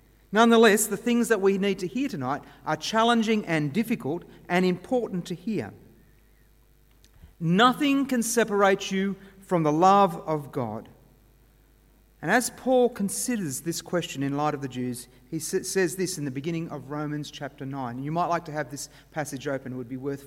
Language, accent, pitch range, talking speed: English, Australian, 145-220 Hz, 175 wpm